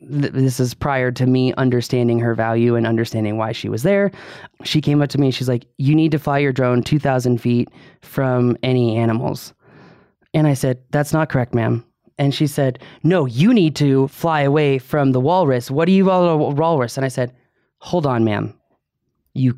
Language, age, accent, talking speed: English, 20-39, American, 195 wpm